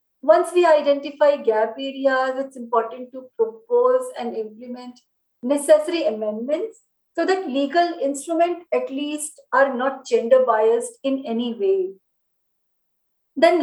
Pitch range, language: 245-310 Hz, English